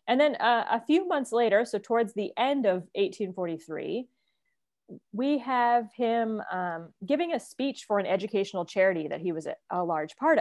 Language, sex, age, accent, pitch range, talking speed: English, female, 30-49, American, 190-255 Hz, 180 wpm